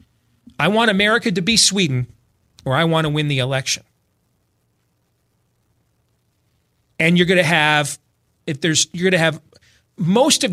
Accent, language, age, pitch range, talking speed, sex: American, English, 40-59, 120-185 Hz, 150 wpm, male